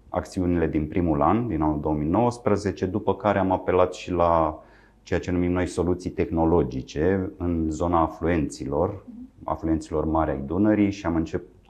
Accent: native